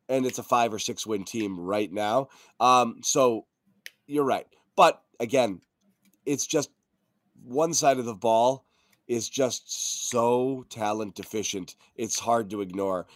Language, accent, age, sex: English, American, 30-49, male